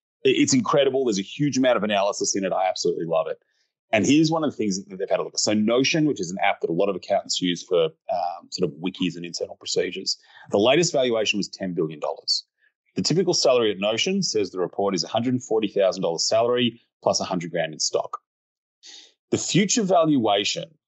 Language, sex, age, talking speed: English, male, 30-49, 200 wpm